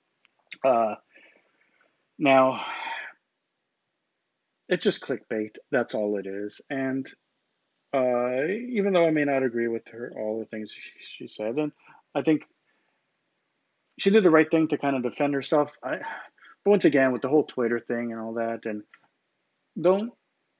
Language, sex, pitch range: English, male, 125-165 Hz